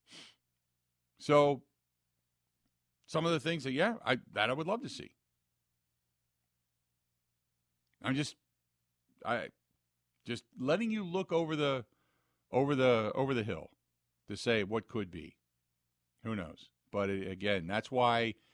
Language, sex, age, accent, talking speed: English, male, 50-69, American, 125 wpm